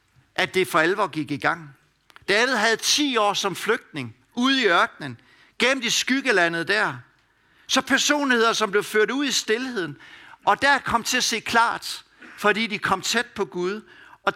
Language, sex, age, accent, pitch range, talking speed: Danish, male, 60-79, native, 175-235 Hz, 180 wpm